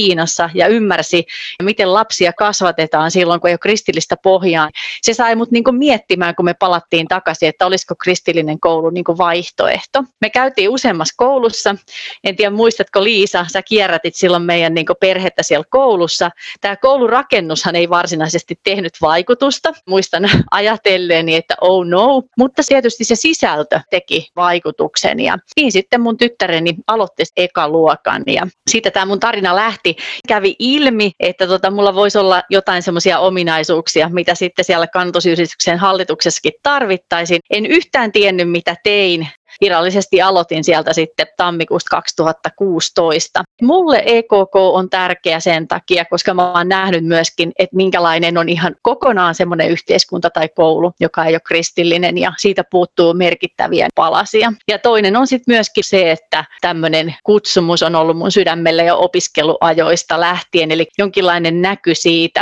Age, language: 30-49, Finnish